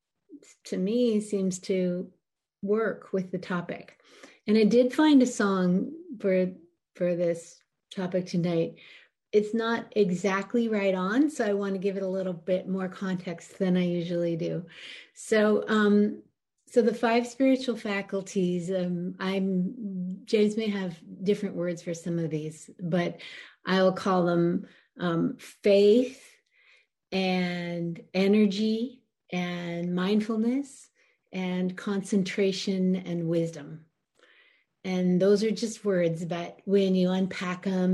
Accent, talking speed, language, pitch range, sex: American, 130 wpm, English, 175-210 Hz, female